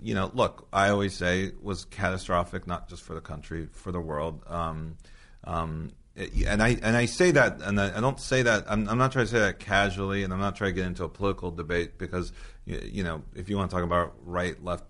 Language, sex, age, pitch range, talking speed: English, male, 40-59, 85-100 Hz, 240 wpm